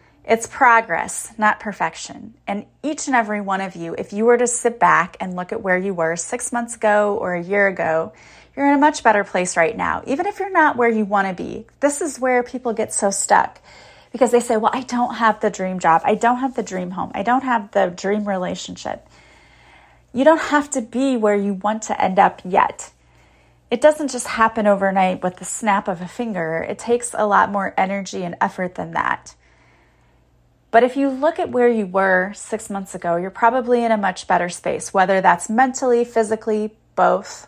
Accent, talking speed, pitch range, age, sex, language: American, 210 wpm, 185-240 Hz, 30-49, female, English